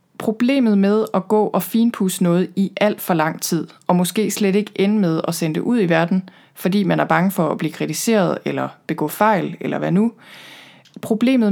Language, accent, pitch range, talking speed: Danish, native, 170-210 Hz, 205 wpm